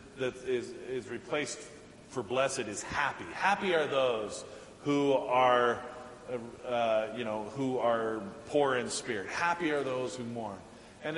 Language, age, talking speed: English, 40-59, 150 wpm